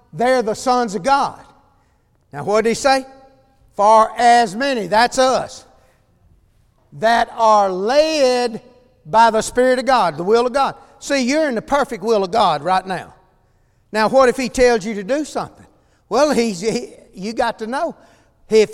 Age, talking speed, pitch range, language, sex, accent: 60-79, 165 wpm, 210-270 Hz, English, male, American